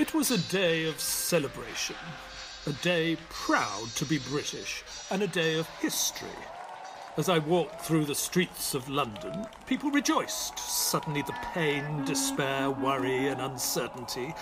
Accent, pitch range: British, 140-185 Hz